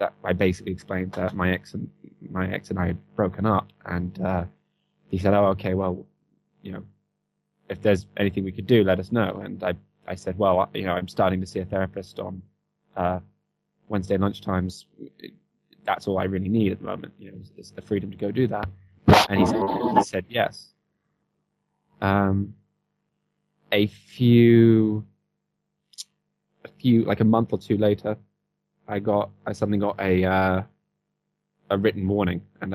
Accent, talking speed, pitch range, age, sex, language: British, 175 wpm, 95-105 Hz, 20-39, male, English